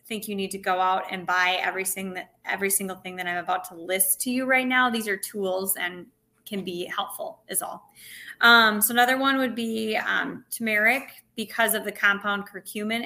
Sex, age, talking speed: female, 20-39, 200 wpm